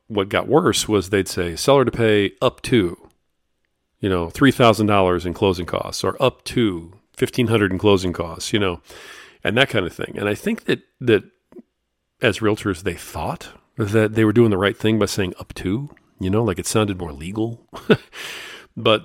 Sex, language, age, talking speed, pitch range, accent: male, English, 40-59, 185 wpm, 90-110 Hz, American